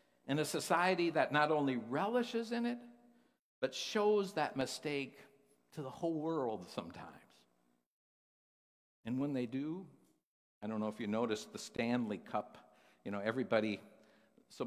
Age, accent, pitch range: 60-79, American, 110-145 Hz